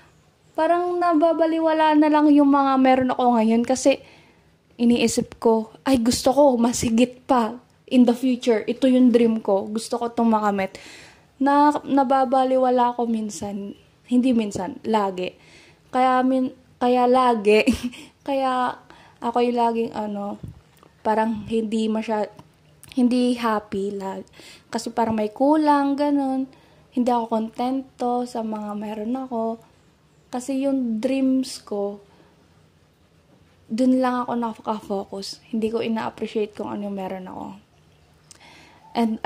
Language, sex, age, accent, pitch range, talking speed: Filipino, female, 20-39, native, 220-270 Hz, 120 wpm